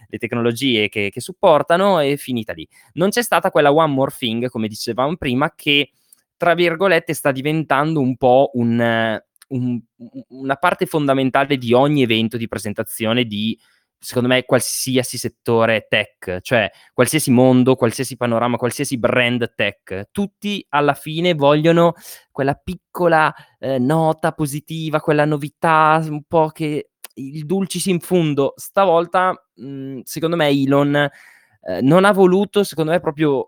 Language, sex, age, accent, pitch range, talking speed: Italian, male, 20-39, native, 115-155 Hz, 135 wpm